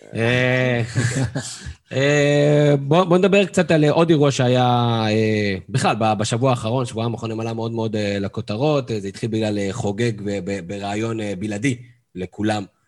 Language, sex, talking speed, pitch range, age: Hebrew, male, 105 wpm, 105-130 Hz, 20-39